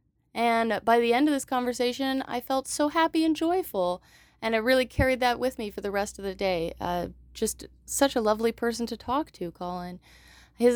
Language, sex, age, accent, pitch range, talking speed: English, female, 20-39, American, 190-260 Hz, 205 wpm